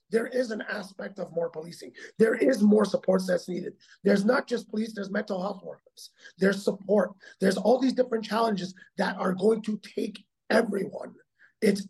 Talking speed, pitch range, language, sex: 175 wpm, 185-225 Hz, English, male